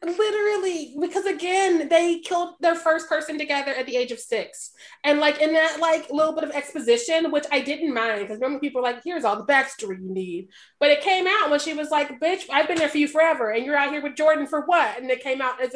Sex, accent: female, American